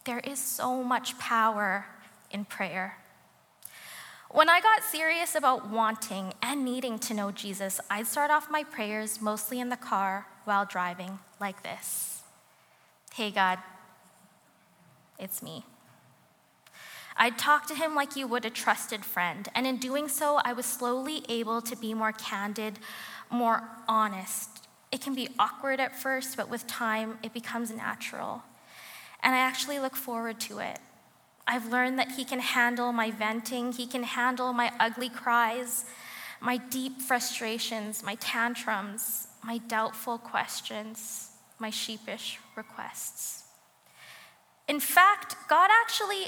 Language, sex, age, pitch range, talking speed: English, female, 20-39, 215-260 Hz, 140 wpm